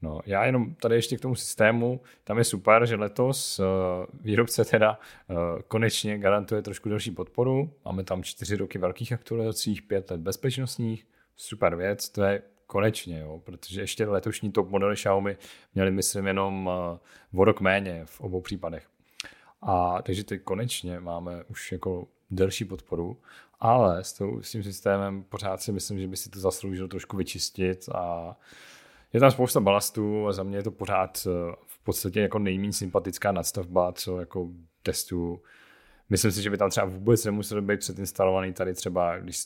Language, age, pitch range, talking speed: Czech, 40-59, 90-110 Hz, 170 wpm